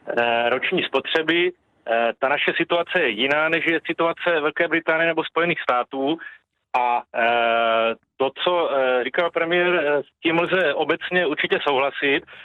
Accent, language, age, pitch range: native, Czech, 40-59, 130-170 Hz